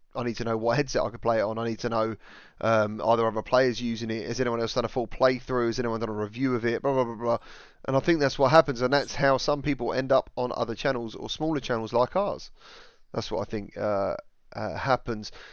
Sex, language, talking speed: male, English, 265 wpm